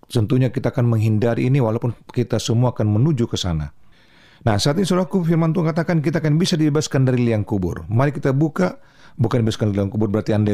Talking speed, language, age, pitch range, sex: 205 wpm, Indonesian, 40-59, 115-160 Hz, male